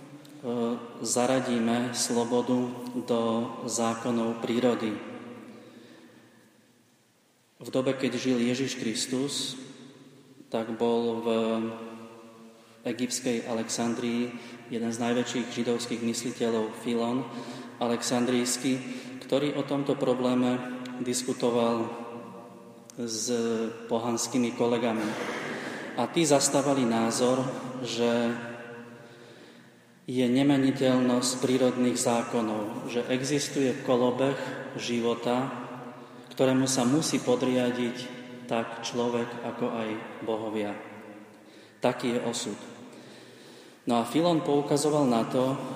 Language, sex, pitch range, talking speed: Slovak, male, 115-130 Hz, 85 wpm